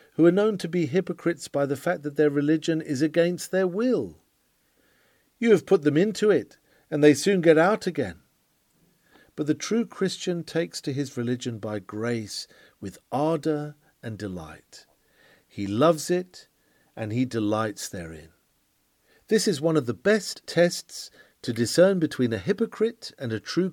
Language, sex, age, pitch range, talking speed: English, male, 50-69, 125-175 Hz, 160 wpm